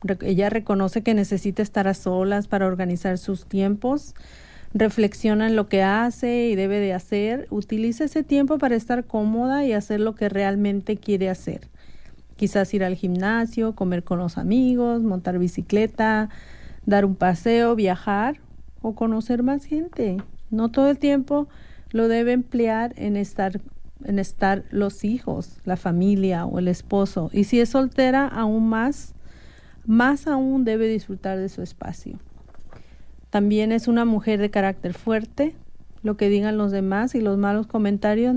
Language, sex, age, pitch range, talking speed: English, female, 40-59, 195-230 Hz, 150 wpm